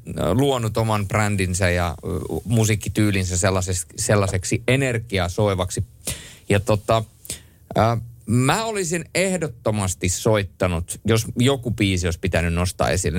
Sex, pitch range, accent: male, 95-120 Hz, native